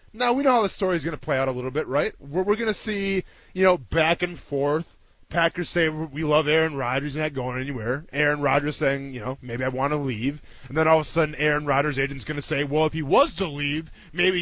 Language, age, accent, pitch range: English, 20-39, American, 125-190 Hz